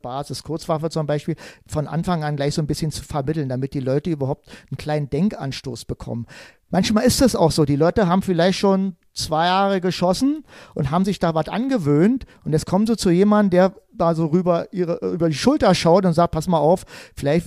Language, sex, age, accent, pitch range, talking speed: German, male, 40-59, German, 145-185 Hz, 210 wpm